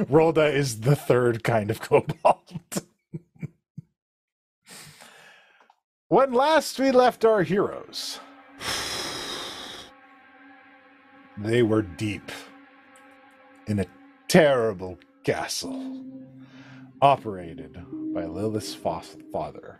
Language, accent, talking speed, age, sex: English, American, 75 wpm, 40-59, male